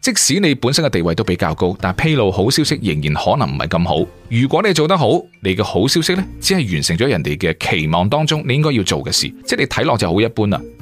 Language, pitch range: Chinese, 100-150 Hz